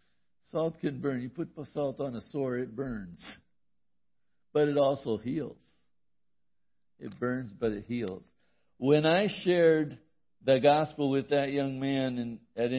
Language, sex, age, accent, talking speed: English, male, 60-79, American, 140 wpm